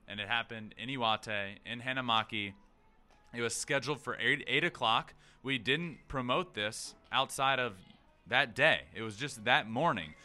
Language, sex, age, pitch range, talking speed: English, male, 20-39, 110-160 Hz, 160 wpm